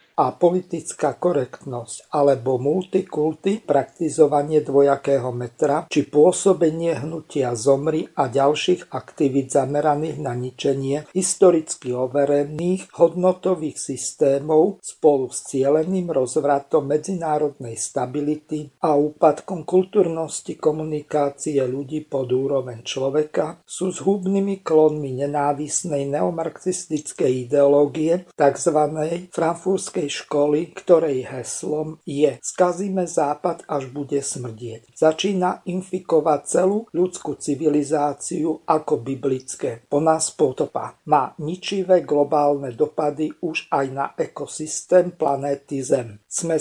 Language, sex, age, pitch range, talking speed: Slovak, male, 50-69, 140-165 Hz, 95 wpm